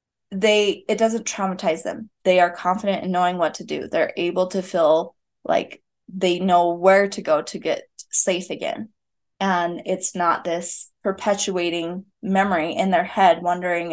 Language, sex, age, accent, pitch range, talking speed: English, female, 20-39, American, 180-225 Hz, 160 wpm